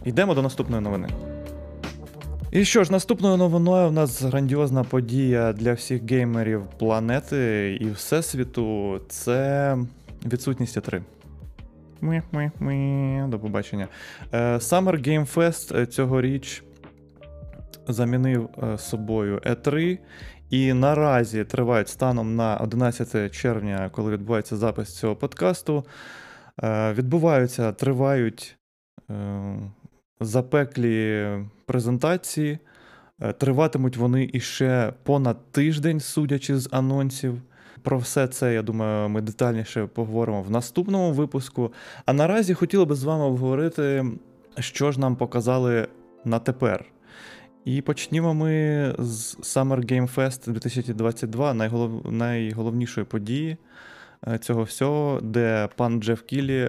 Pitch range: 110-135 Hz